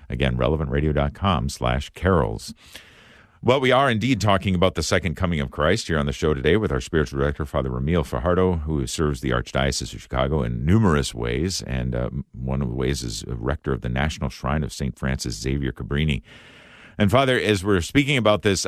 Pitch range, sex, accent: 70-95 Hz, male, American